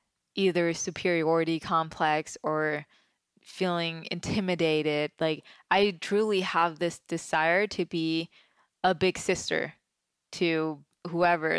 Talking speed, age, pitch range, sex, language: 100 wpm, 20-39, 155-180 Hz, female, English